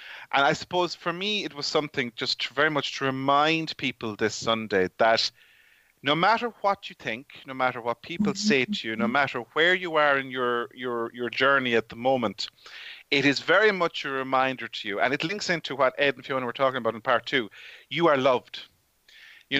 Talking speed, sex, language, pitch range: 210 wpm, male, English, 120-155 Hz